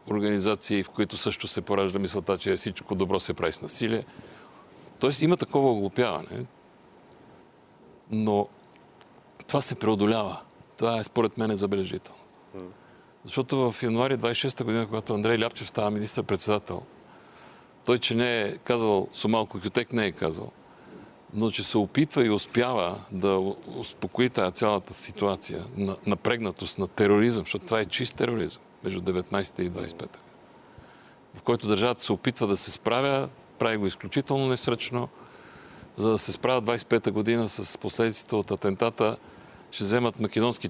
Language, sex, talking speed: Bulgarian, male, 140 wpm